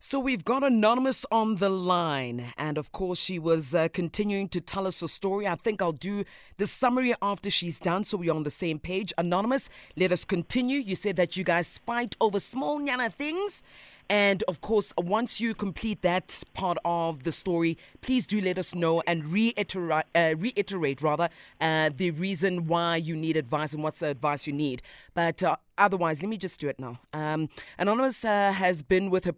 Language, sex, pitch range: English, female, 155-200 Hz